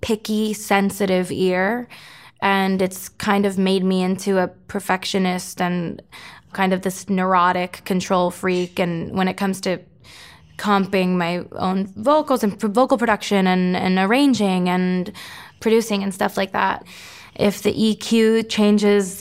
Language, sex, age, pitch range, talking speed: English, female, 20-39, 180-210 Hz, 135 wpm